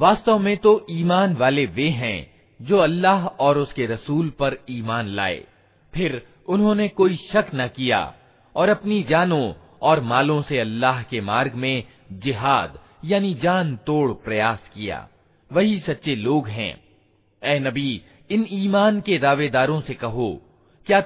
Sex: male